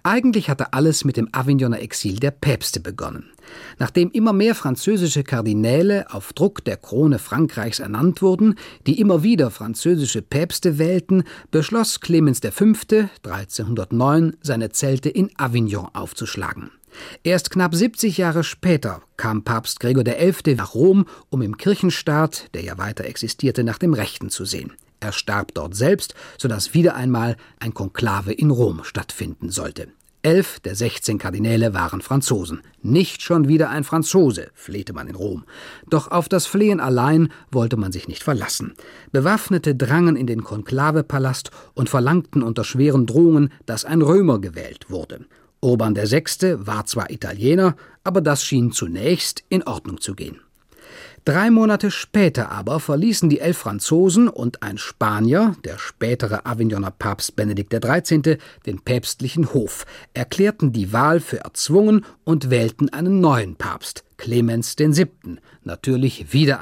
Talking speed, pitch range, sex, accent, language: 145 wpm, 115-170 Hz, male, German, German